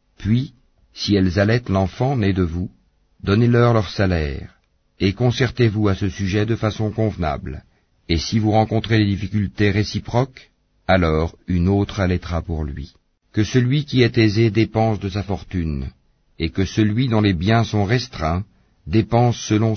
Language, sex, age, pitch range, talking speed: French, male, 50-69, 90-110 Hz, 160 wpm